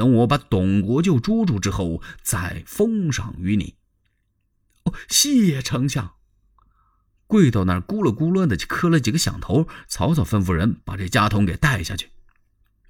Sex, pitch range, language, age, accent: male, 95-155 Hz, Chinese, 30-49, native